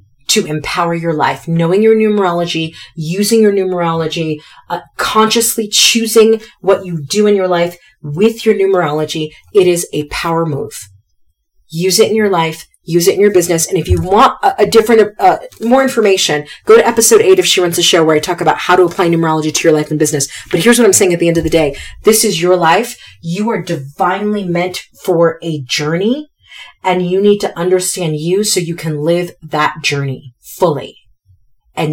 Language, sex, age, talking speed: English, female, 30-49, 195 wpm